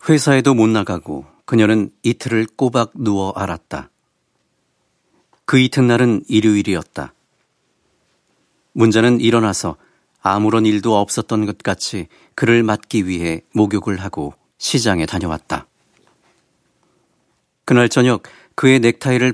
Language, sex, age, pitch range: Korean, male, 40-59, 100-120 Hz